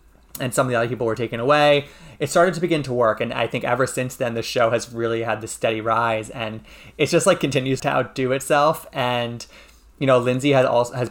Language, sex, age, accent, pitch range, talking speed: English, male, 20-39, American, 115-145 Hz, 240 wpm